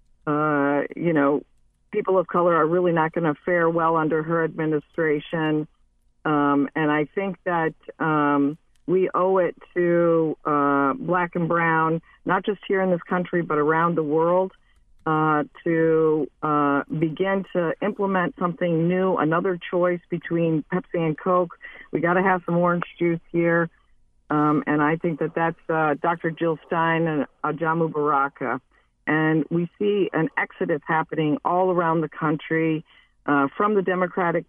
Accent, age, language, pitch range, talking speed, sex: American, 50-69, English, 150-175 Hz, 155 wpm, female